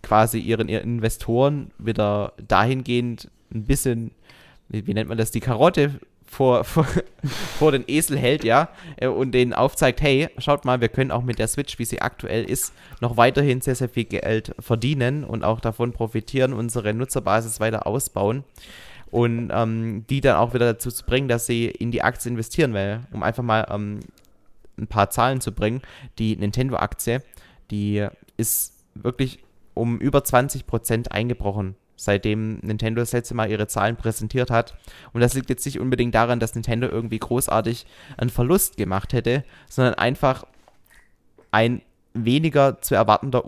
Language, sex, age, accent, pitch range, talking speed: German, male, 20-39, German, 105-125 Hz, 160 wpm